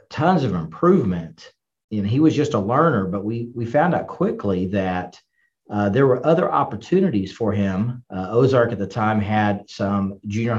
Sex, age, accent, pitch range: male, 40-59, American, 105-125 Hz